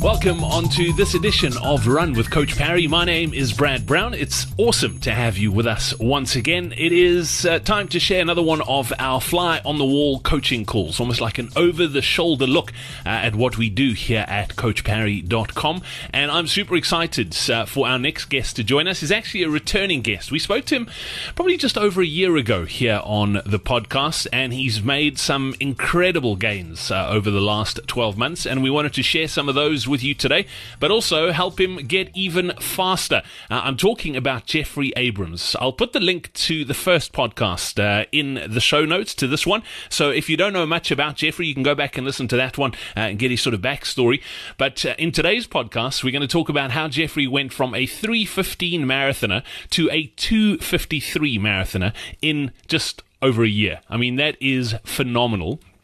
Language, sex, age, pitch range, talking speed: English, male, 30-49, 120-165 Hz, 205 wpm